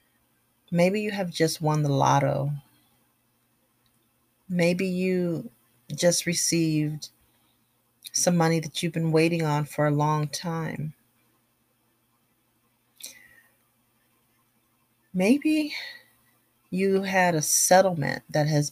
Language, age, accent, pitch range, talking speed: English, 40-59, American, 120-170 Hz, 95 wpm